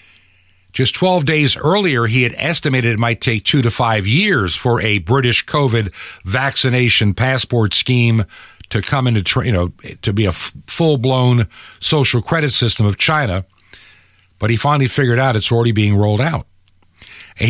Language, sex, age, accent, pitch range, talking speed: English, male, 50-69, American, 100-145 Hz, 160 wpm